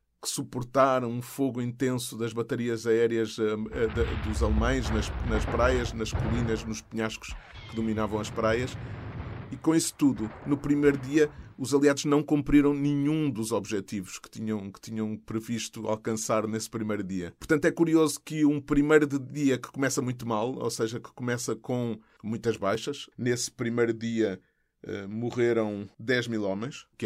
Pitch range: 100-130 Hz